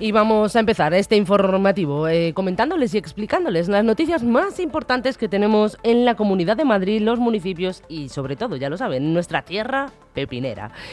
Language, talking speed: Spanish, 175 wpm